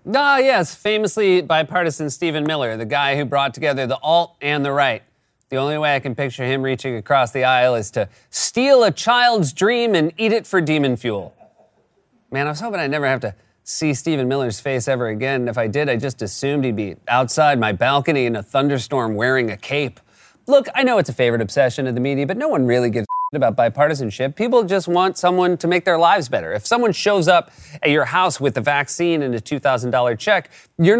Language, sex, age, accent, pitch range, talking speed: English, male, 30-49, American, 135-185 Hz, 220 wpm